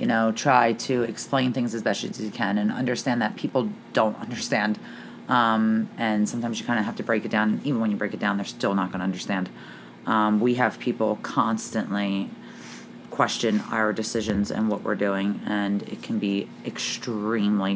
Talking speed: 190 wpm